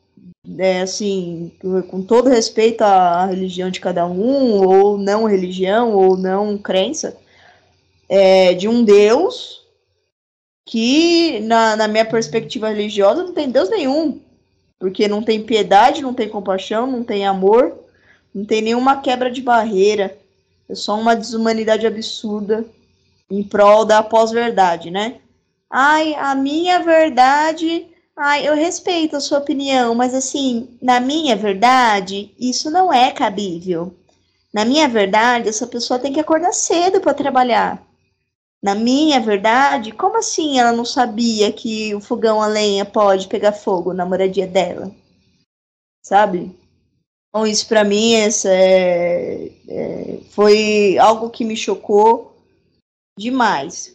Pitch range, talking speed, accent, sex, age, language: 200-260 Hz, 135 wpm, Brazilian, female, 10-29, Portuguese